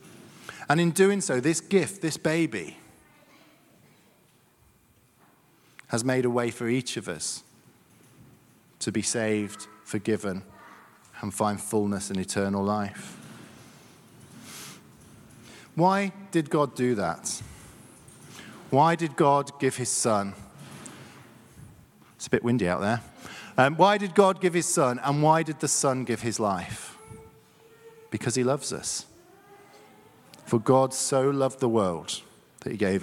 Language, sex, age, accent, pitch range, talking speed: English, male, 40-59, British, 120-175 Hz, 130 wpm